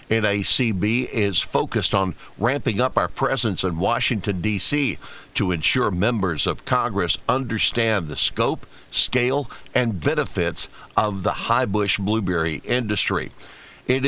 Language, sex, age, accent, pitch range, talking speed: English, male, 60-79, American, 100-125 Hz, 120 wpm